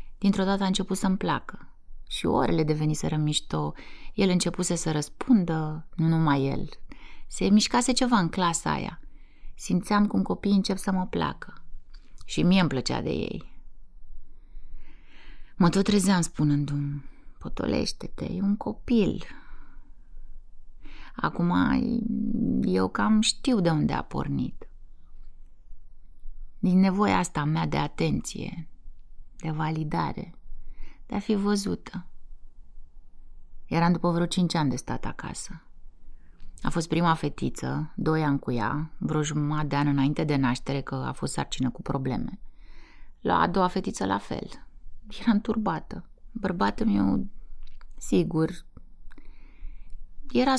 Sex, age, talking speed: female, 30-49, 125 wpm